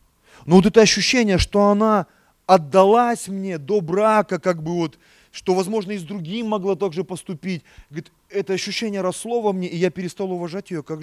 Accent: native